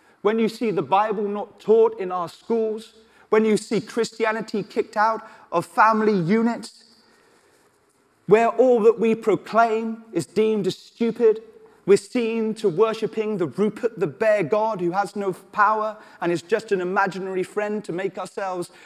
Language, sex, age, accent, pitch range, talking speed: English, male, 30-49, British, 195-235 Hz, 160 wpm